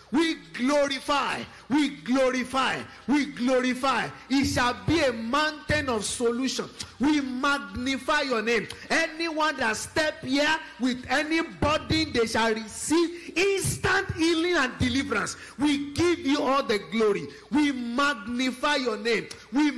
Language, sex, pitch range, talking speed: English, male, 250-310 Hz, 125 wpm